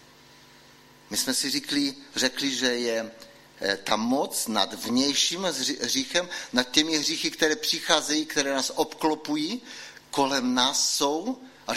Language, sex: Czech, male